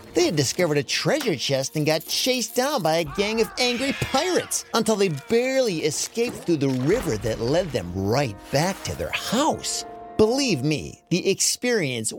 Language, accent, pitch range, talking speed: English, American, 115-185 Hz, 170 wpm